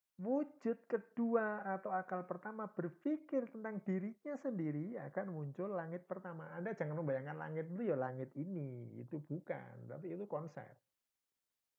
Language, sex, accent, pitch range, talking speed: Indonesian, male, native, 130-210 Hz, 130 wpm